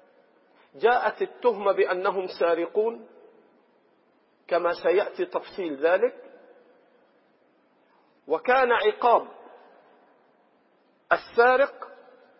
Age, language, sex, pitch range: 50-69, Arabic, male, 185-315 Hz